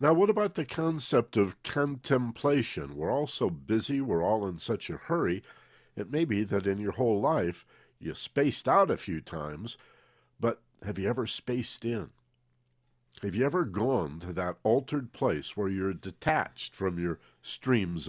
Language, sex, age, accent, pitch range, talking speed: English, male, 50-69, American, 95-130 Hz, 170 wpm